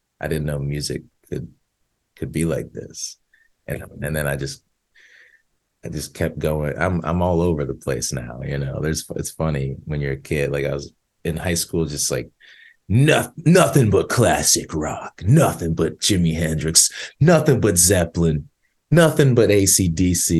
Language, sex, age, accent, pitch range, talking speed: English, male, 30-49, American, 80-105 Hz, 170 wpm